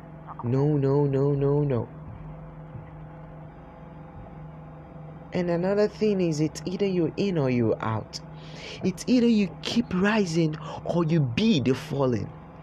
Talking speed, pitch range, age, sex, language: 125 wpm, 125-165 Hz, 20-39, male, English